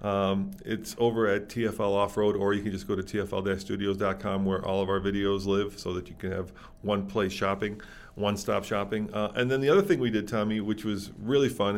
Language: English